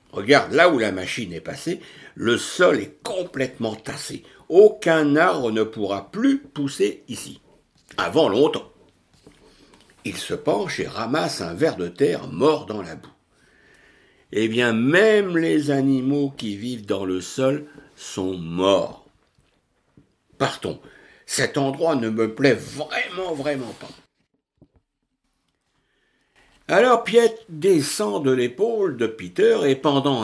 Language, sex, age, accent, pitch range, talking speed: French, male, 60-79, French, 110-165 Hz, 125 wpm